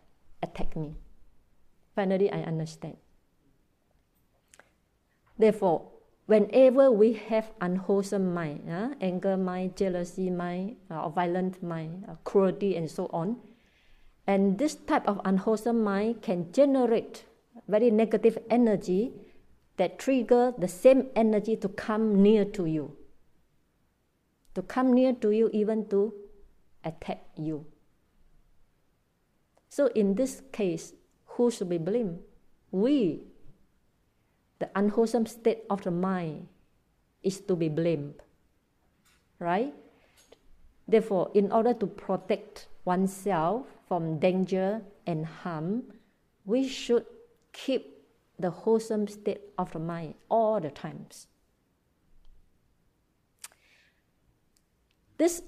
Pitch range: 180-225 Hz